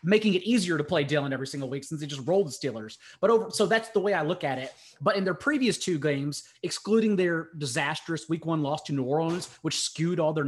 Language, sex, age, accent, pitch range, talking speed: English, male, 30-49, American, 150-185 Hz, 250 wpm